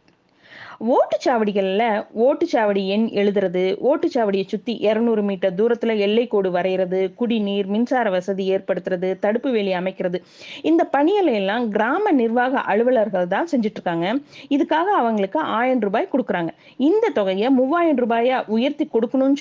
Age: 20-39